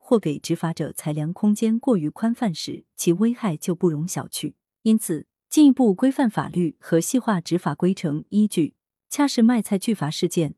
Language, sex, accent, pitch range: Chinese, female, native, 160-220 Hz